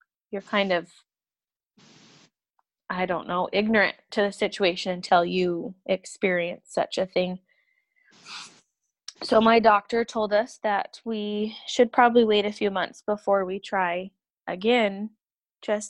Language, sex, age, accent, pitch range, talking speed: English, female, 20-39, American, 185-220 Hz, 130 wpm